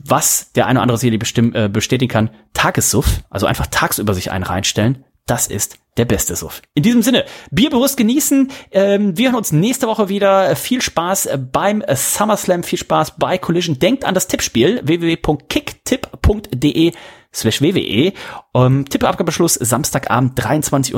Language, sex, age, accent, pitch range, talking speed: German, male, 30-49, German, 125-190 Hz, 150 wpm